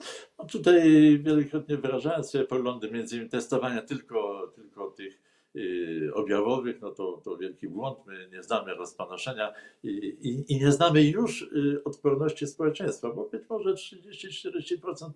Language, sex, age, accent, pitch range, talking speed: Polish, male, 50-69, native, 120-155 Hz, 135 wpm